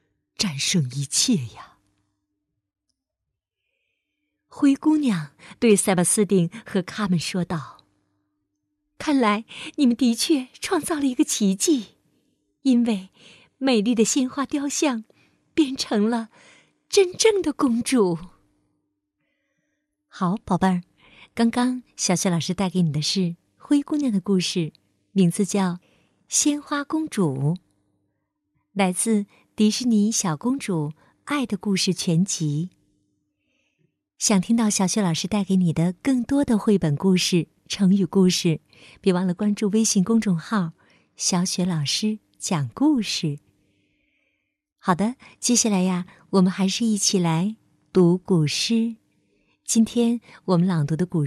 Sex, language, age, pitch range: female, Chinese, 50-69, 170-240 Hz